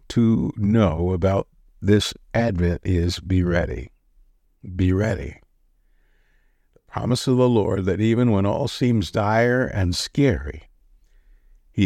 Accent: American